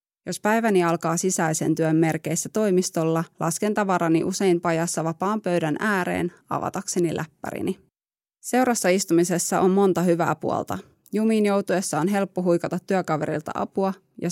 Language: Finnish